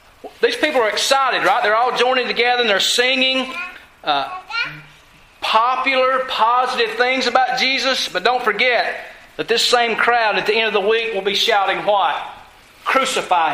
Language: English